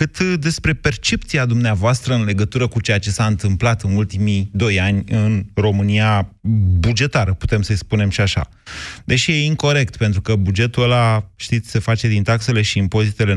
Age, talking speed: 30-49, 165 wpm